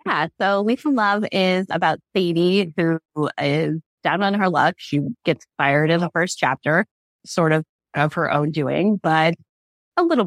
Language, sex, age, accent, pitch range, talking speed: English, female, 30-49, American, 155-190 Hz, 175 wpm